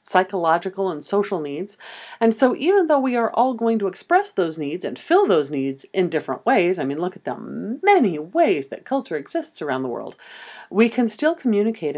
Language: English